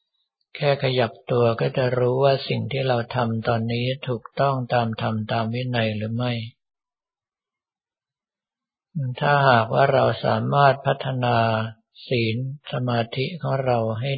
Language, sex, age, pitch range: Thai, male, 60-79, 115-130 Hz